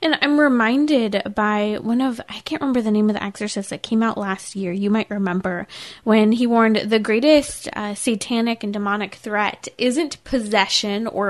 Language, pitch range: English, 210-255 Hz